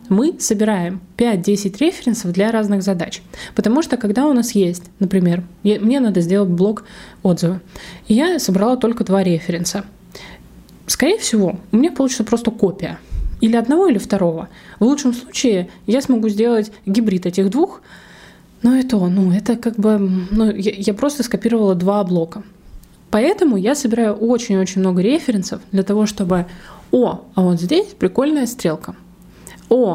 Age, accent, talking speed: 20-39, native, 150 wpm